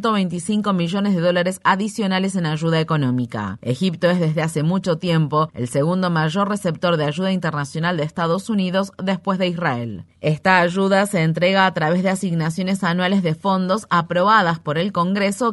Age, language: 30-49, Spanish